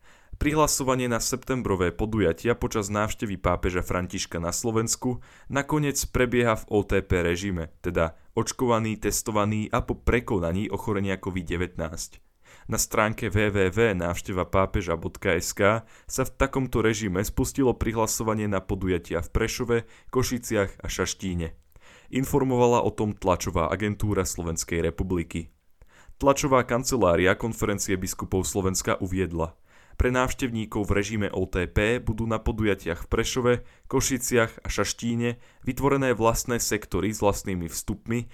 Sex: male